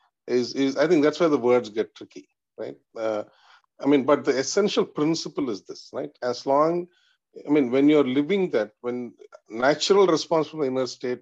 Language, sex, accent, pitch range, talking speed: English, male, Indian, 120-160 Hz, 195 wpm